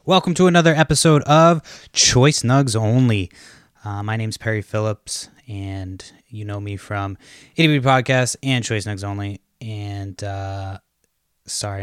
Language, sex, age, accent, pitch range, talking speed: English, male, 20-39, American, 100-110 Hz, 130 wpm